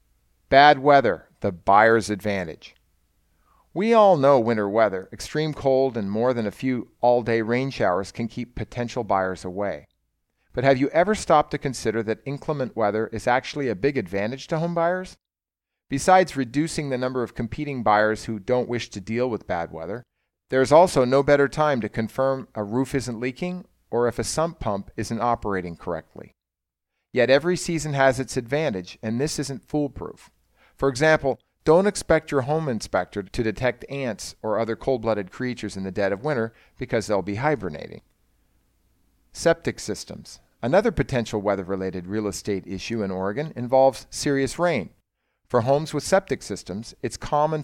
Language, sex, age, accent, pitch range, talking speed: English, male, 40-59, American, 105-140 Hz, 165 wpm